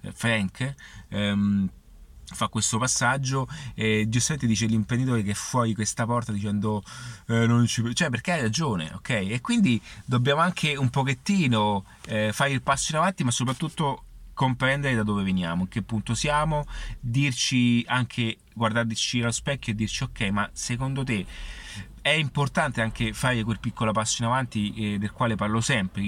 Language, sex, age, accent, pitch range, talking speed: Italian, male, 30-49, native, 105-135 Hz, 160 wpm